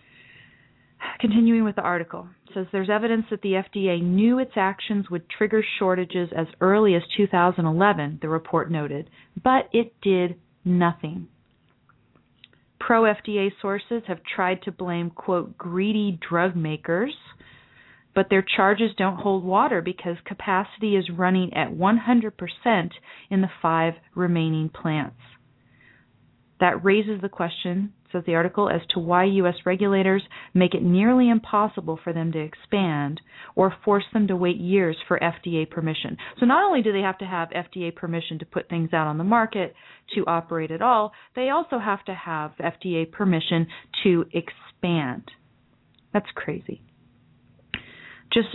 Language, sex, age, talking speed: English, female, 30-49, 145 wpm